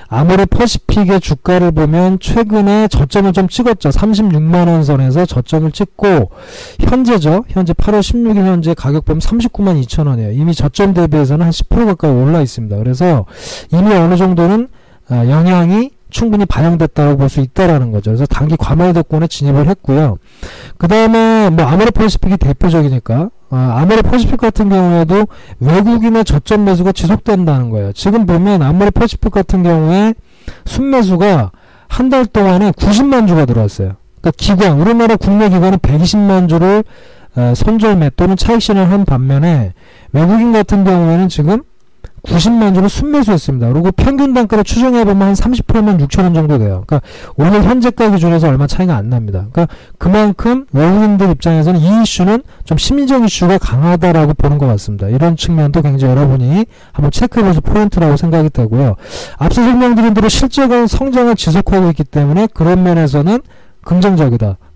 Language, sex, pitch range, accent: Korean, male, 145-210 Hz, native